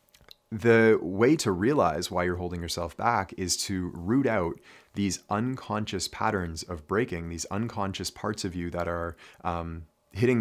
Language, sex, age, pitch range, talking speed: English, male, 30-49, 85-105 Hz, 155 wpm